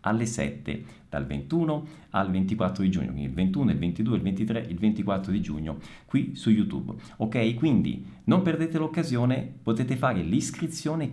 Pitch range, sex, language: 95-125 Hz, male, Italian